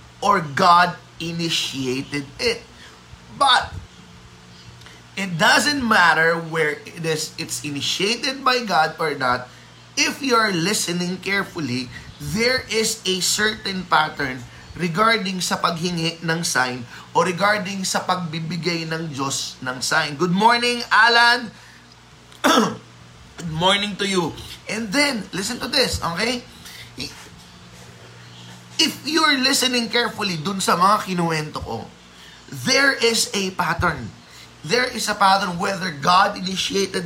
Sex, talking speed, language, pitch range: male, 120 wpm, Filipino, 130-210 Hz